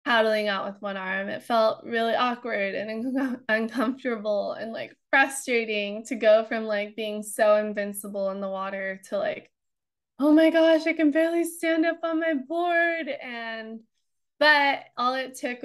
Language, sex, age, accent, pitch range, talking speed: English, female, 20-39, American, 200-255 Hz, 160 wpm